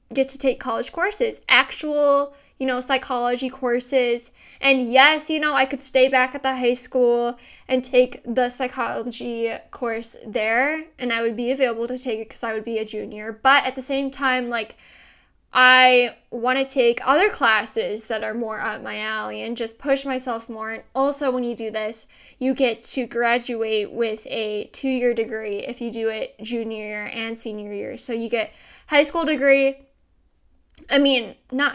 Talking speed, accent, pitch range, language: 185 wpm, American, 230-270 Hz, English